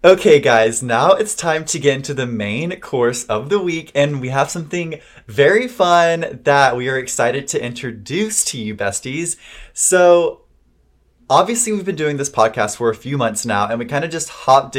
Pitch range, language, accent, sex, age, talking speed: 125-170 Hz, English, American, male, 20-39, 190 wpm